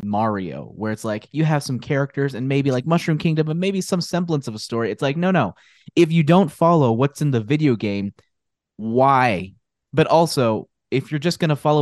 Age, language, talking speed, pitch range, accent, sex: 20-39, English, 215 wpm, 110-150 Hz, American, male